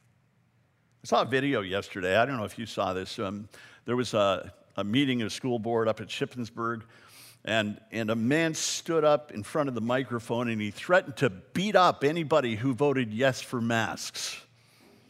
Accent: American